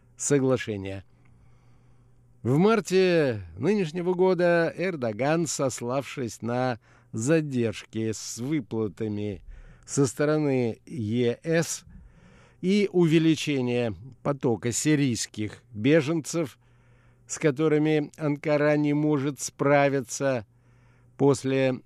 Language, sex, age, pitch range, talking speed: Russian, male, 60-79, 120-155 Hz, 70 wpm